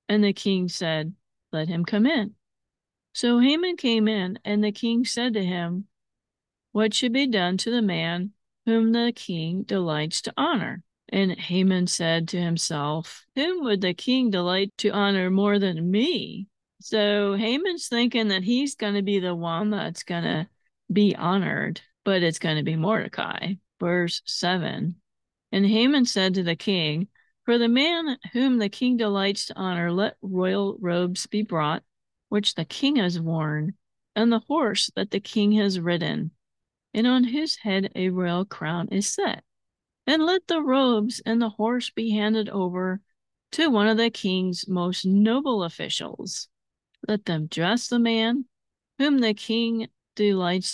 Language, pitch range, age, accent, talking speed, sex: English, 180-230 Hz, 40-59, American, 165 wpm, female